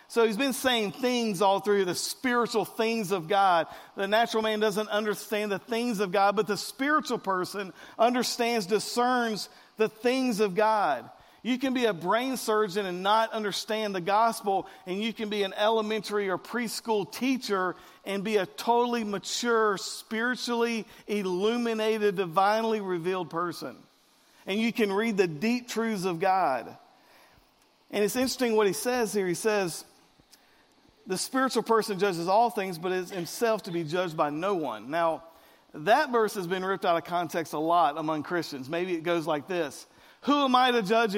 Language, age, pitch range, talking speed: English, 50-69, 195-235 Hz, 170 wpm